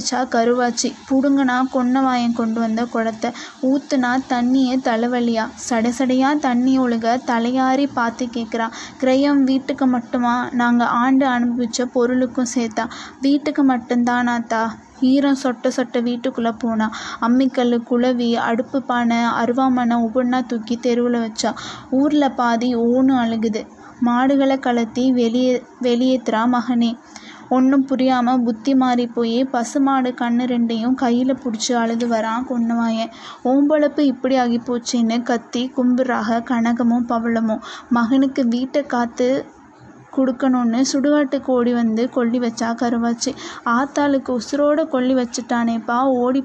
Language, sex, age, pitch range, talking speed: Tamil, female, 20-39, 235-260 Hz, 95 wpm